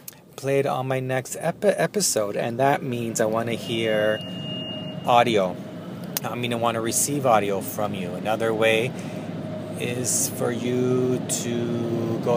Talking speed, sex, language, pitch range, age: 140 wpm, male, English, 115-155 Hz, 30-49